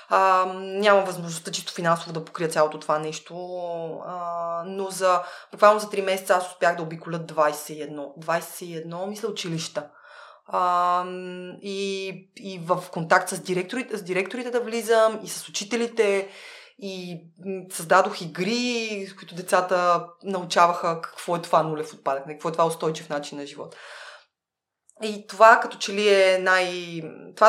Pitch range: 170-220 Hz